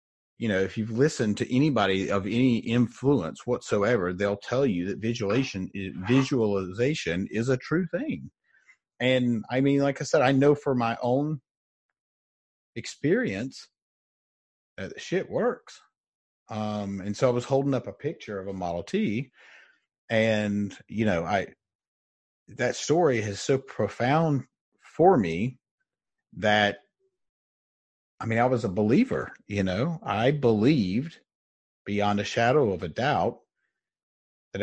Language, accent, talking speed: English, American, 140 wpm